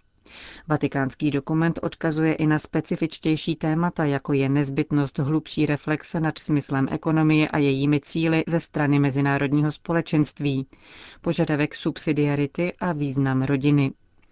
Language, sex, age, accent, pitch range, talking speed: Czech, female, 40-59, native, 145-165 Hz, 115 wpm